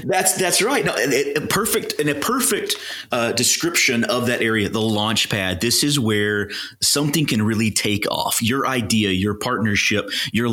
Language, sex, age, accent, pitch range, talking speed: English, male, 30-49, American, 100-125 Hz, 190 wpm